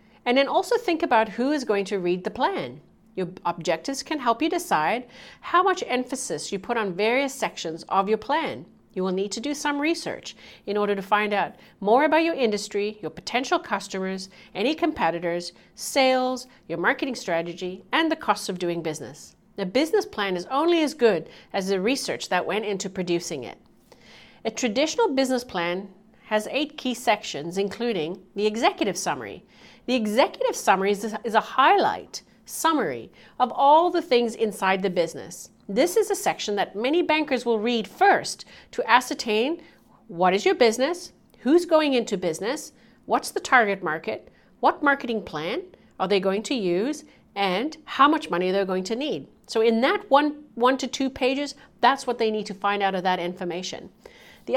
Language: English